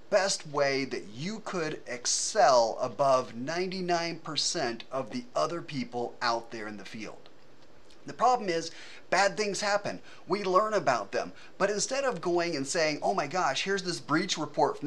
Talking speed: 165 wpm